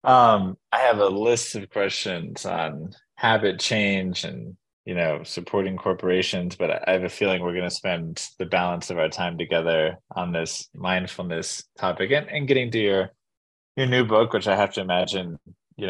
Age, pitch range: 20-39, 85-110 Hz